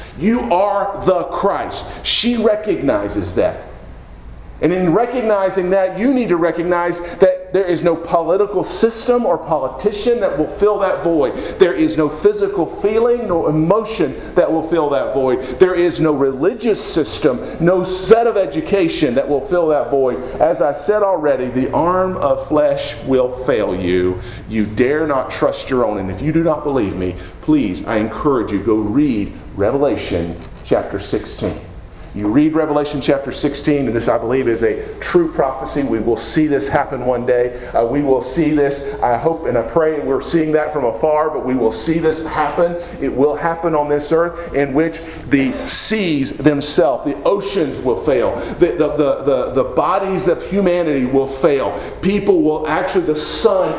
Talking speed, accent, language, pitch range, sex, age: 175 wpm, American, English, 140-195 Hz, male, 40-59